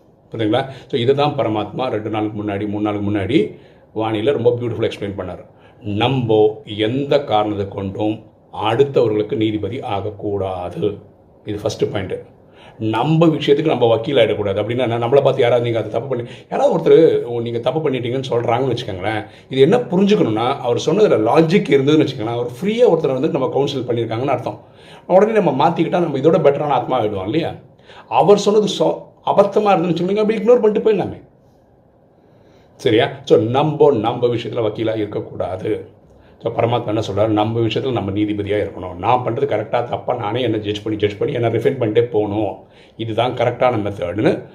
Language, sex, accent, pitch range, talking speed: Tamil, male, native, 105-145 Hz, 150 wpm